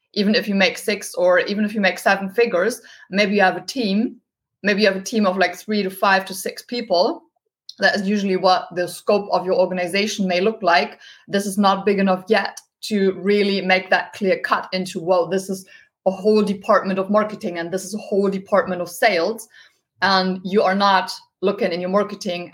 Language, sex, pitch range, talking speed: English, female, 185-215 Hz, 210 wpm